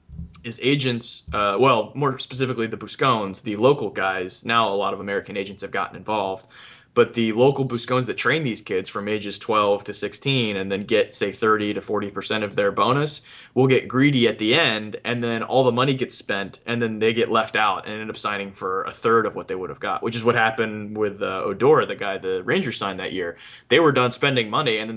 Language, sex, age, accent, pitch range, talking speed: English, male, 20-39, American, 105-125 Hz, 230 wpm